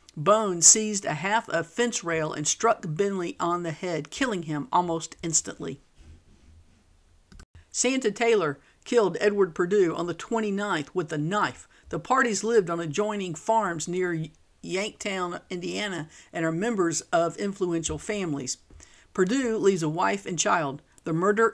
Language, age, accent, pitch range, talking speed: English, 50-69, American, 155-205 Hz, 140 wpm